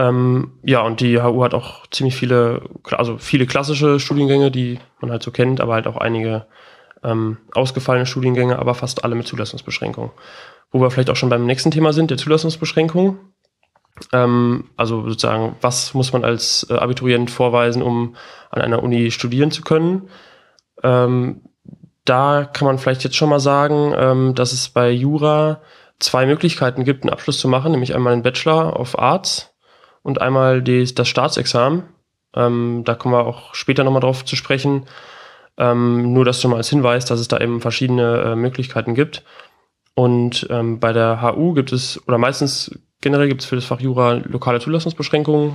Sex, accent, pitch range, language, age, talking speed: male, German, 120-140 Hz, German, 20-39, 175 wpm